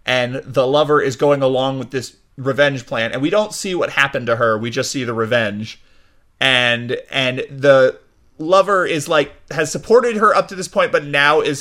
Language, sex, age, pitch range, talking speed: English, male, 30-49, 125-155 Hz, 200 wpm